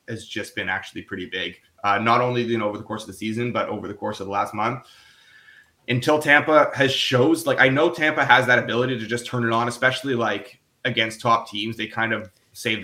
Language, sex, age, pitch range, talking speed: English, male, 20-39, 105-125 Hz, 235 wpm